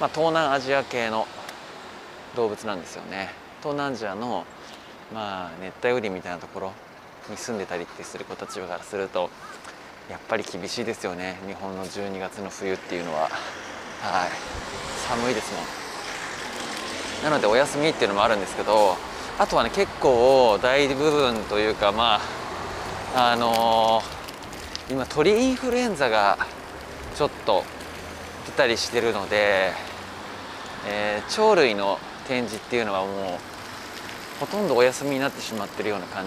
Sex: male